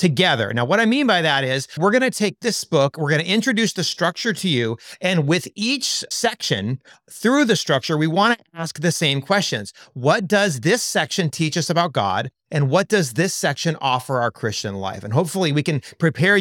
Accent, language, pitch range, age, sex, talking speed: American, English, 140-195 Hz, 30-49, male, 210 wpm